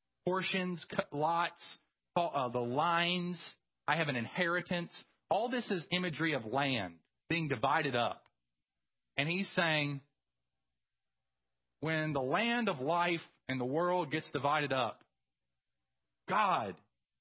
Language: English